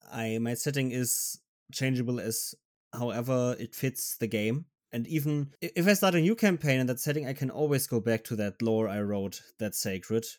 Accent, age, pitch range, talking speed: German, 20-39, 115-140 Hz, 195 wpm